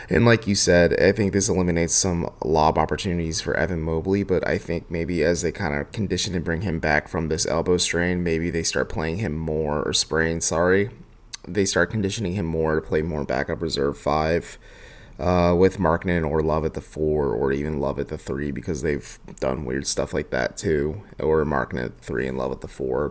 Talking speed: 215 wpm